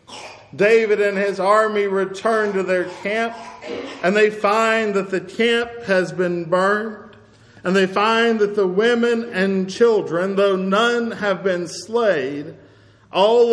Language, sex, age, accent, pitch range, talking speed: English, male, 50-69, American, 175-205 Hz, 140 wpm